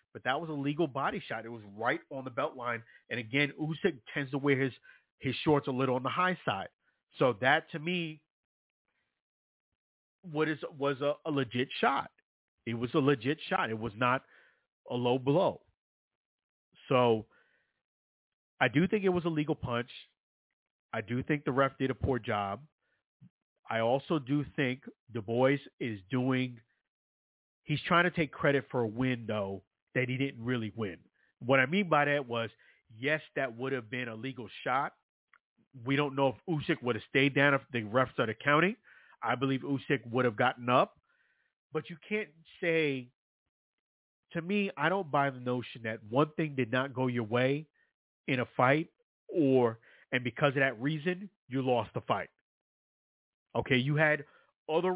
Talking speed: 175 wpm